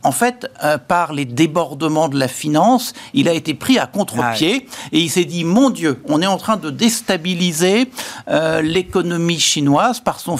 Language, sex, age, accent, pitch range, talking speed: French, male, 60-79, French, 150-205 Hz, 185 wpm